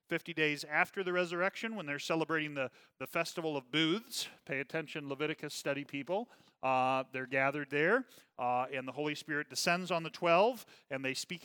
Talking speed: 180 wpm